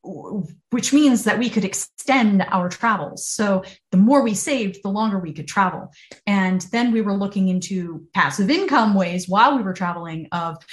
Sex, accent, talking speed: female, American, 180 wpm